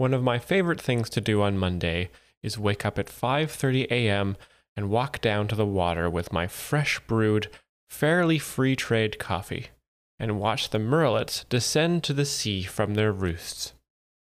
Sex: male